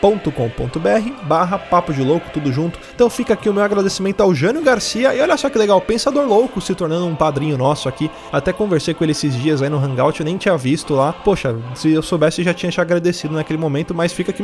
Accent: Brazilian